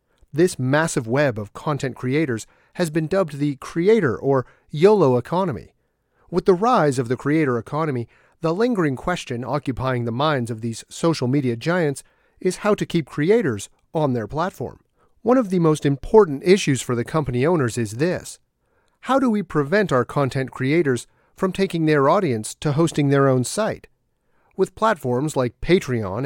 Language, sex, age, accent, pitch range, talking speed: English, male, 40-59, American, 125-180 Hz, 165 wpm